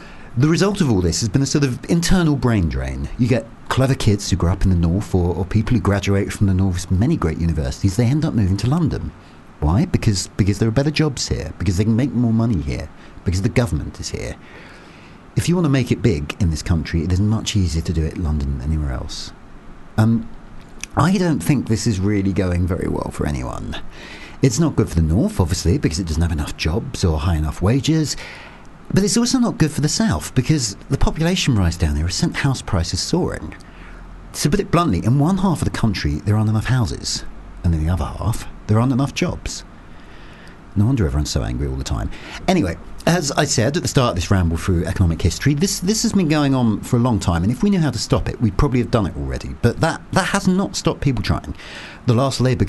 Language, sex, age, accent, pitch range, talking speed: English, male, 40-59, British, 85-130 Hz, 240 wpm